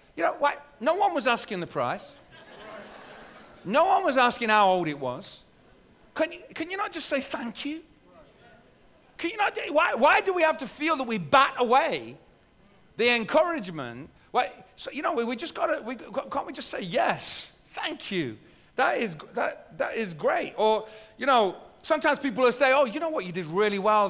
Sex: male